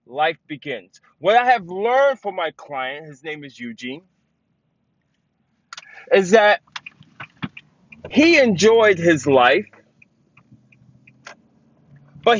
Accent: American